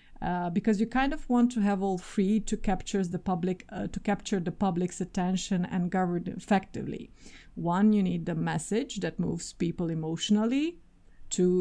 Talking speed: 155 wpm